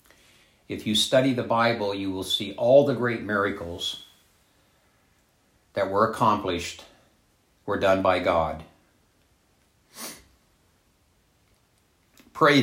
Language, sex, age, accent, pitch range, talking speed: English, male, 60-79, American, 90-125 Hz, 95 wpm